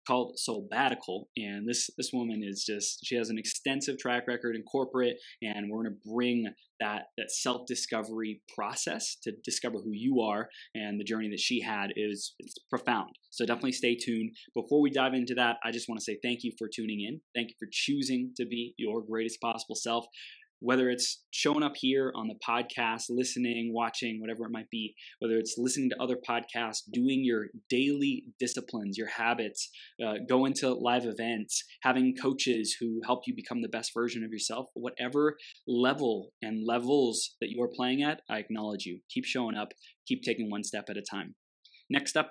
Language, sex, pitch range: English, male, 115-135 Hz